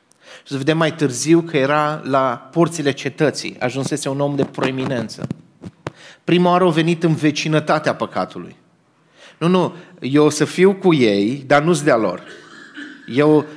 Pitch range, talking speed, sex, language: 135-165 Hz, 140 wpm, male, English